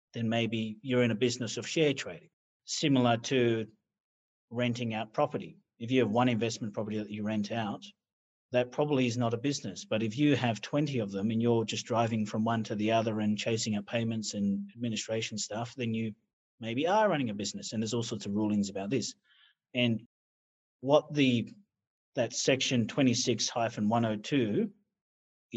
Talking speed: 175 wpm